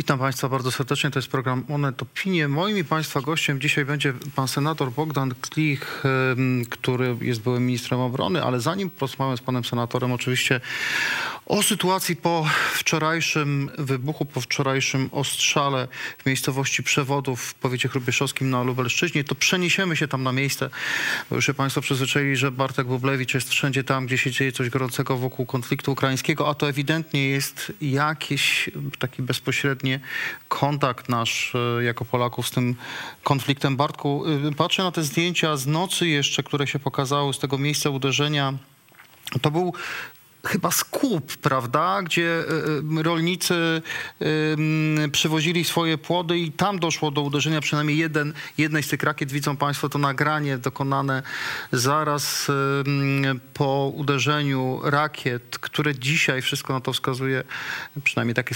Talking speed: 140 wpm